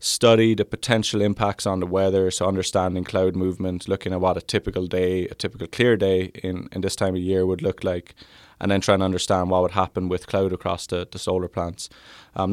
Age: 20-39